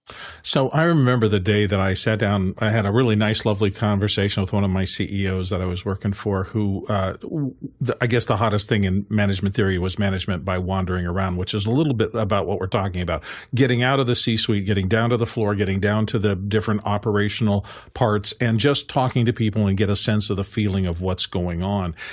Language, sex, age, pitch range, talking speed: English, male, 50-69, 100-125 Hz, 230 wpm